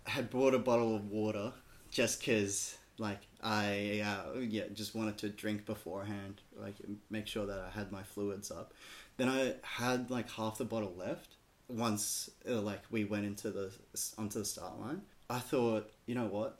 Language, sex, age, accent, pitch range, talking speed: English, male, 20-39, Australian, 105-115 Hz, 185 wpm